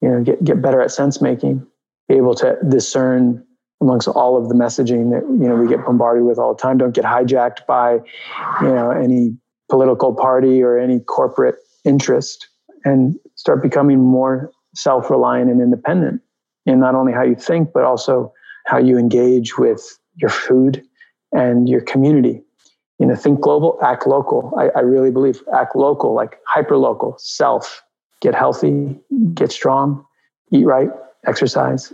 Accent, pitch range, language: American, 125-140 Hz, English